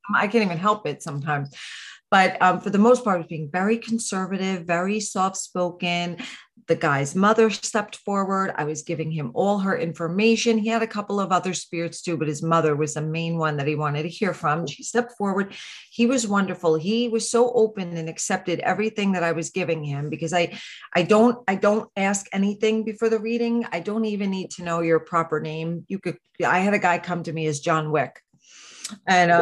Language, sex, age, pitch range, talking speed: English, female, 40-59, 165-215 Hz, 210 wpm